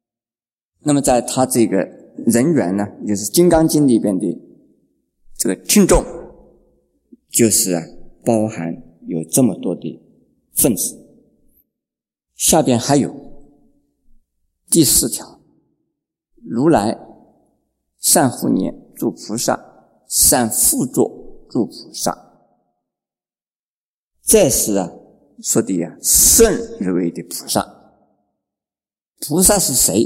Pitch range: 110-155 Hz